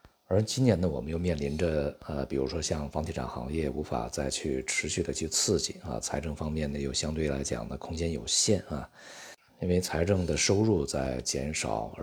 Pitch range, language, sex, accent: 70-85 Hz, Chinese, male, native